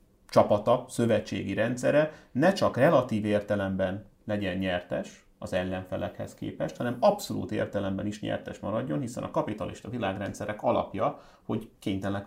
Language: English